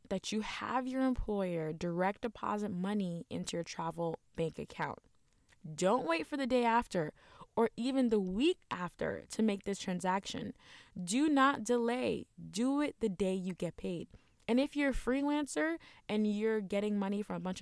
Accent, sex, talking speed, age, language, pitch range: American, female, 170 wpm, 20-39, English, 195-245 Hz